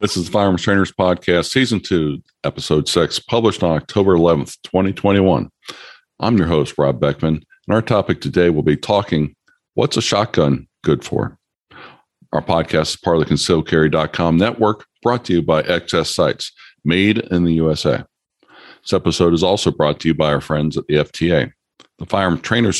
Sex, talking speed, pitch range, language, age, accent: male, 175 wpm, 80-105 Hz, English, 50-69, American